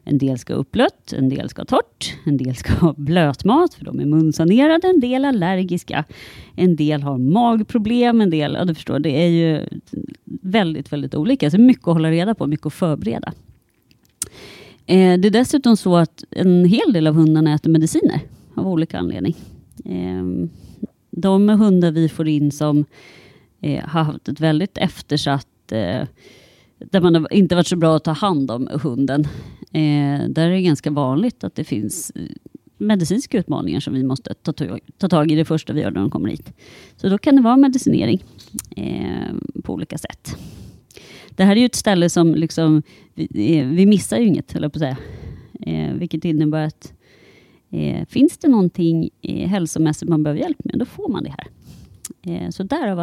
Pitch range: 150-200 Hz